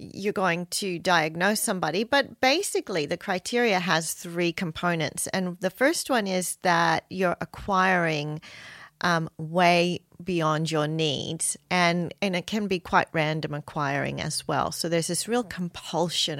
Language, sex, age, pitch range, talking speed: English, female, 40-59, 160-190 Hz, 145 wpm